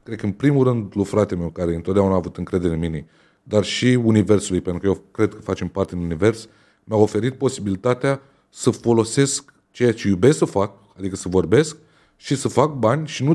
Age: 30-49